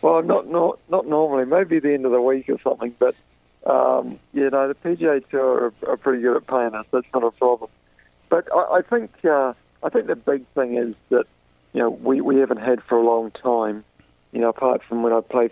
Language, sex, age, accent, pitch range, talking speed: English, male, 40-59, British, 105-125 Hz, 230 wpm